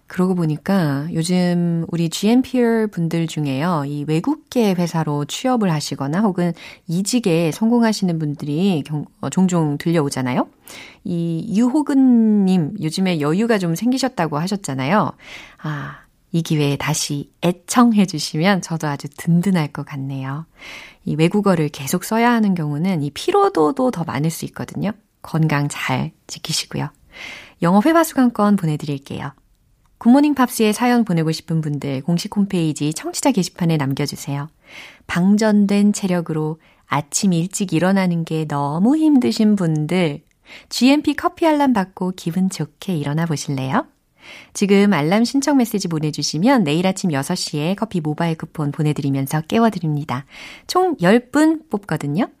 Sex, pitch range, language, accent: female, 150-215 Hz, Korean, native